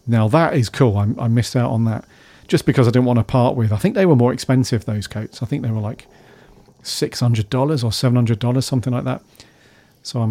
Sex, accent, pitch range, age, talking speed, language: male, British, 115-140 Hz, 40-59, 225 wpm, English